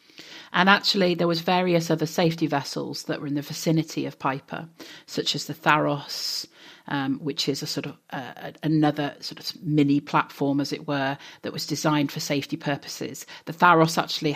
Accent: British